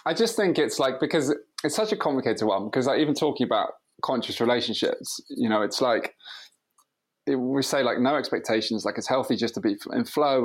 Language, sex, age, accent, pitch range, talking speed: English, male, 20-39, British, 115-145 Hz, 205 wpm